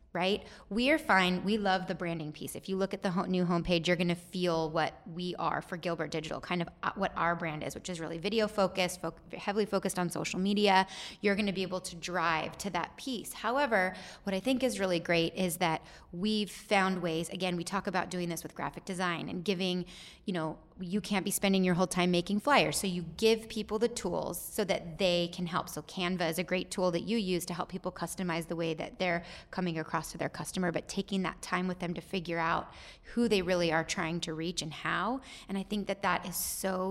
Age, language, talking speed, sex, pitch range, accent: 20-39, English, 235 wpm, female, 170-195 Hz, American